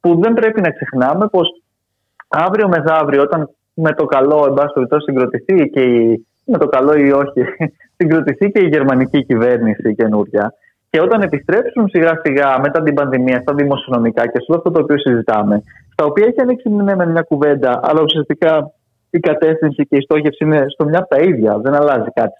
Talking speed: 175 wpm